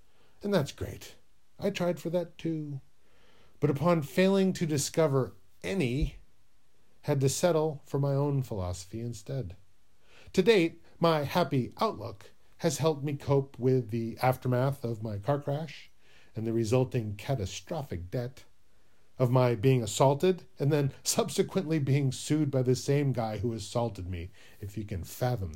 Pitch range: 110-165 Hz